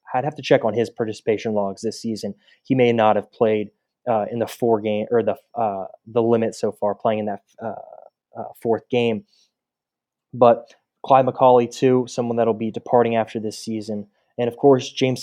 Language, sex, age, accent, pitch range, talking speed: English, male, 20-39, American, 110-130 Hz, 200 wpm